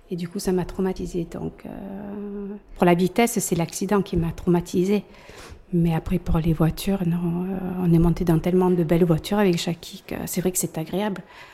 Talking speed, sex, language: 205 wpm, female, French